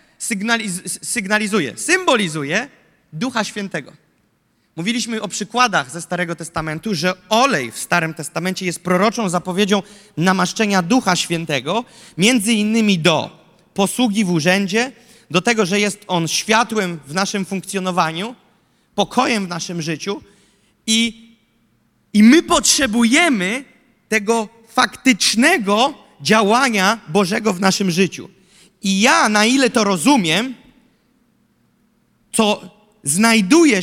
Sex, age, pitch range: male, 30-49, 180-240 Hz